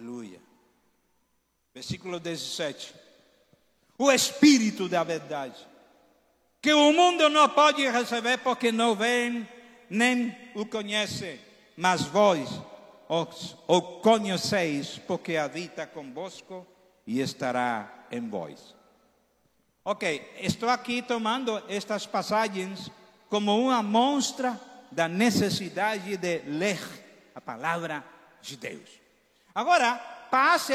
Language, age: Portuguese, 60-79